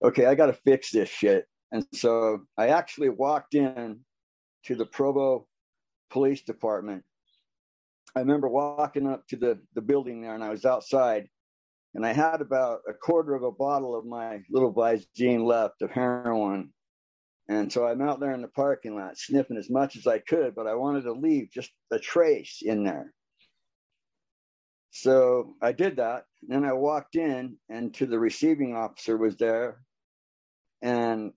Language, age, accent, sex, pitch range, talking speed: English, 60-79, American, male, 110-135 Hz, 165 wpm